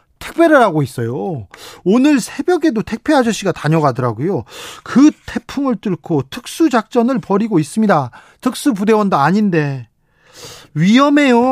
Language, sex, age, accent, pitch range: Korean, male, 40-59, native, 160-230 Hz